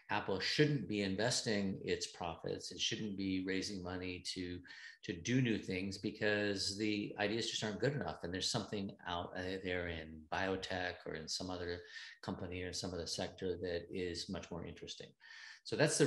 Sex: male